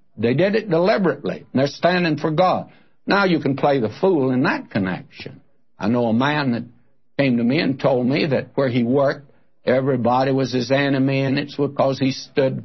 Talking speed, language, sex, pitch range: 195 wpm, English, male, 120-145 Hz